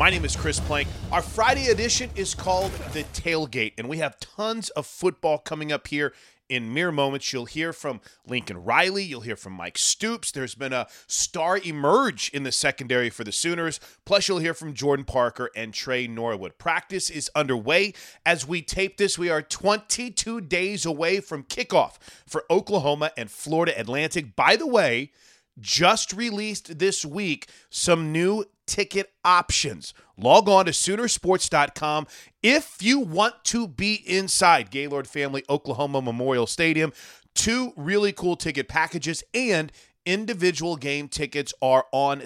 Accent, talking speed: American, 155 wpm